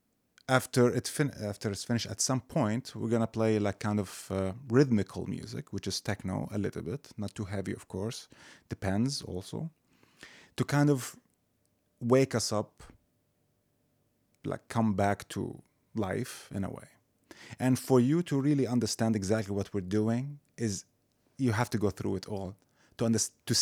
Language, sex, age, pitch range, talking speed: English, male, 30-49, 105-130 Hz, 170 wpm